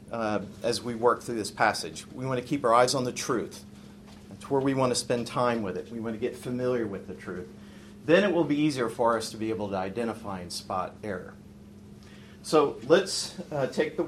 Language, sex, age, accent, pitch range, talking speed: English, male, 40-59, American, 105-140 Hz, 225 wpm